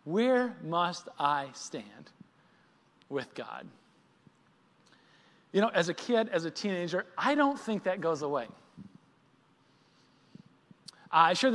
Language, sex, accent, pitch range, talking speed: English, male, American, 155-225 Hz, 115 wpm